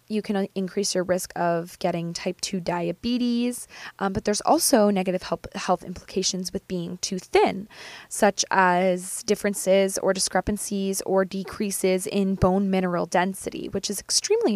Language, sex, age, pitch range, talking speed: English, female, 20-39, 180-215 Hz, 150 wpm